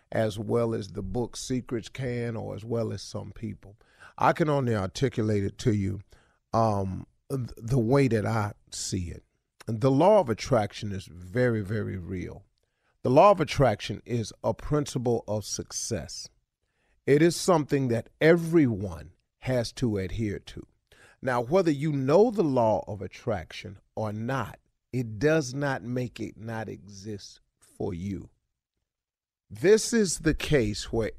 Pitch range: 105-145 Hz